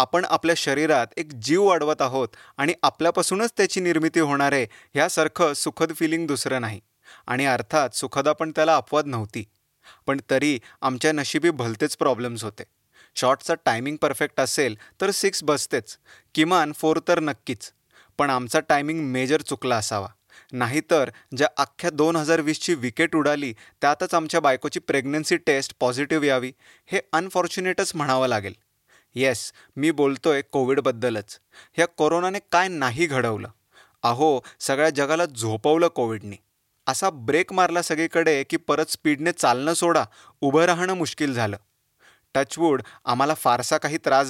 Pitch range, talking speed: 130-165 Hz, 135 wpm